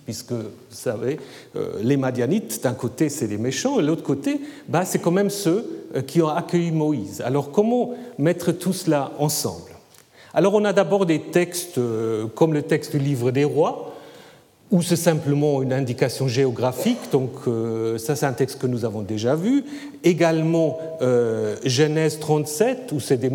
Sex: male